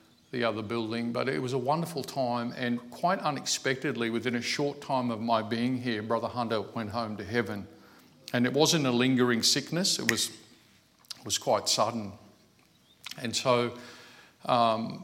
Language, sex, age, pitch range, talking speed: English, male, 50-69, 110-130 Hz, 165 wpm